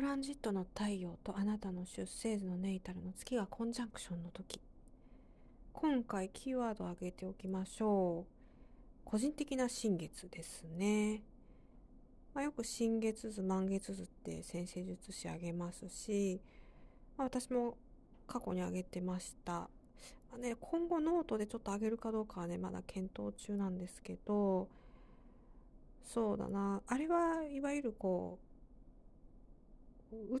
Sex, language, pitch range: female, Japanese, 185-230 Hz